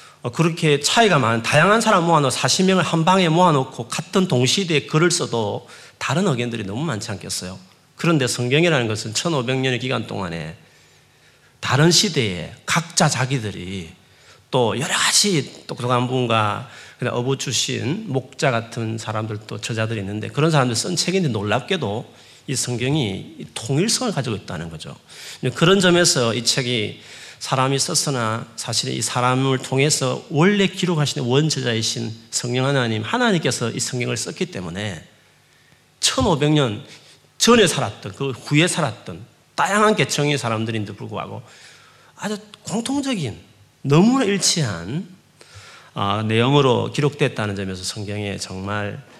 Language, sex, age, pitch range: Korean, male, 40-59, 110-160 Hz